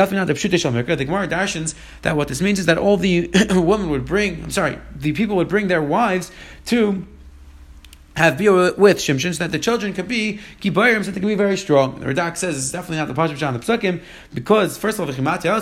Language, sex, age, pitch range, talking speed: English, male, 30-49, 160-200 Hz, 205 wpm